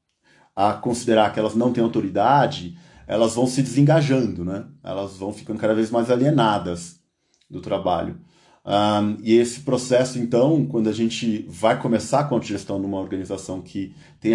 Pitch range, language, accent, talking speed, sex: 100-130 Hz, Portuguese, Brazilian, 160 wpm, male